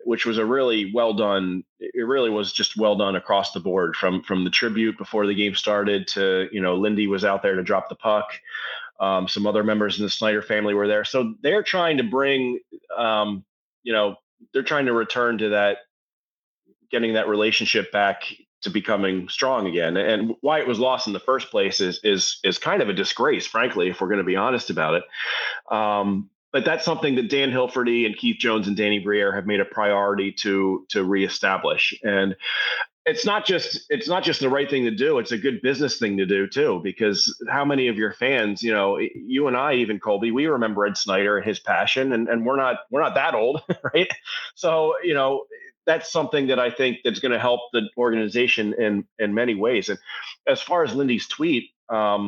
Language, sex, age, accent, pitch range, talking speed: English, male, 30-49, American, 100-130 Hz, 210 wpm